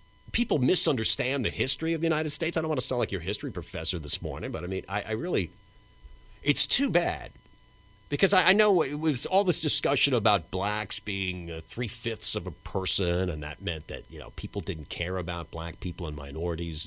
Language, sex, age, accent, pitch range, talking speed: English, male, 40-59, American, 90-125 Hz, 210 wpm